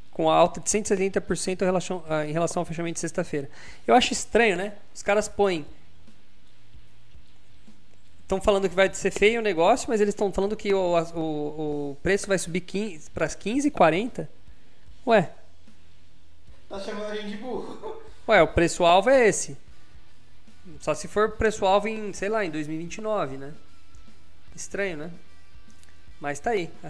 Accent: Brazilian